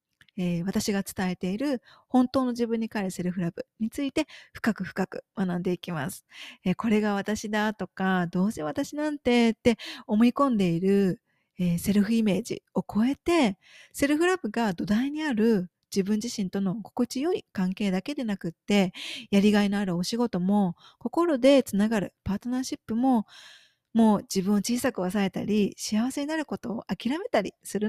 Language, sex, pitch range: Japanese, female, 190-245 Hz